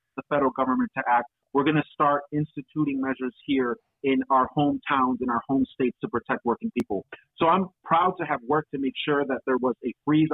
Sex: male